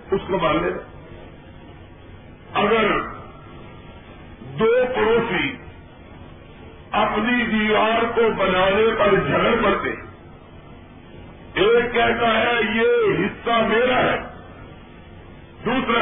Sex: male